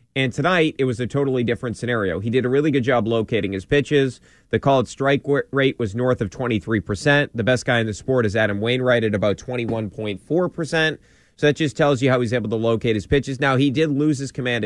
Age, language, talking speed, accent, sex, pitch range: 30-49, English, 230 wpm, American, male, 115-140 Hz